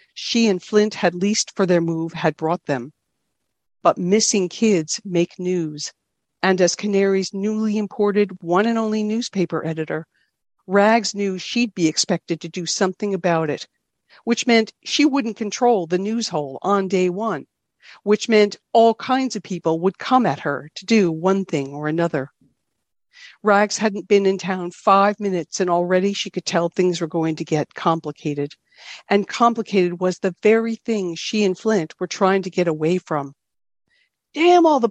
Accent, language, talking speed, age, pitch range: American, English, 170 wpm, 50-69, 175-220 Hz